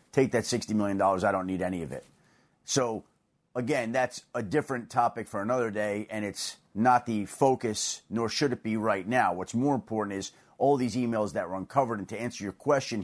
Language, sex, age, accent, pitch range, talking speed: English, male, 30-49, American, 105-145 Hz, 205 wpm